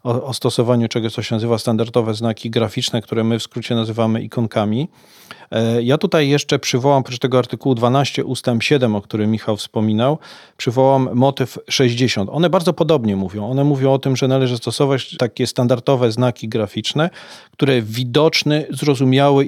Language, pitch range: Polish, 120-135 Hz